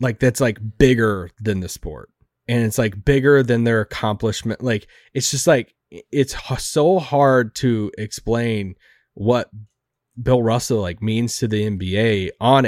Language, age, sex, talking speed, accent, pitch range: English, 20-39, male, 150 wpm, American, 115-145 Hz